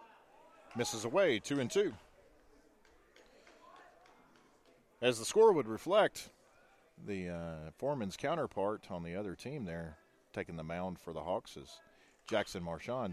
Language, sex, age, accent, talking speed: English, male, 40-59, American, 130 wpm